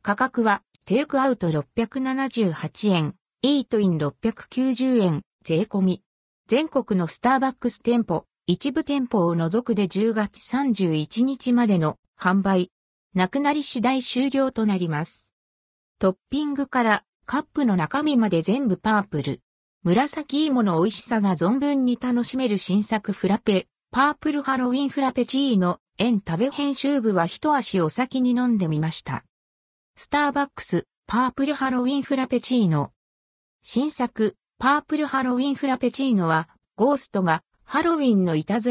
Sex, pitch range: female, 180-265 Hz